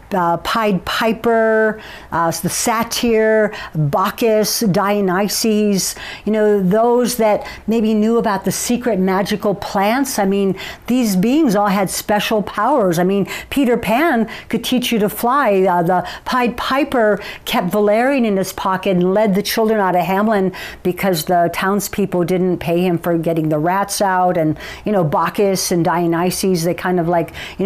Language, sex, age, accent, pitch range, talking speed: English, female, 60-79, American, 175-220 Hz, 160 wpm